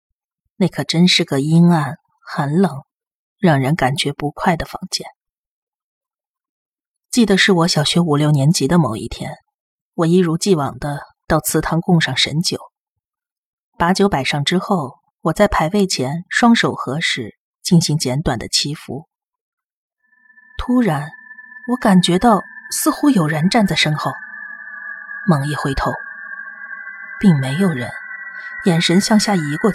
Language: Chinese